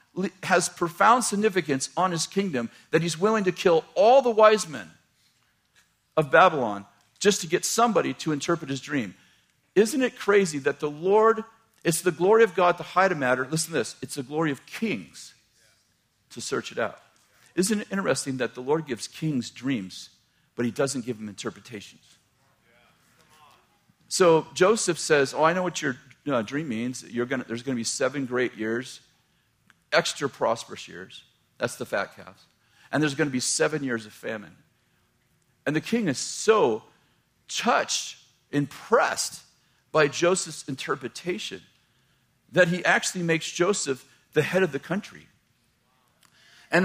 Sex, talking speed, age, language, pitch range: male, 155 wpm, 50-69, English, 130-185 Hz